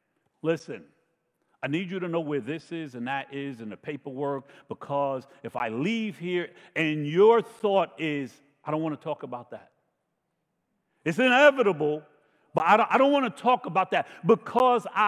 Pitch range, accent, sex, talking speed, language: 155-230 Hz, American, male, 165 wpm, English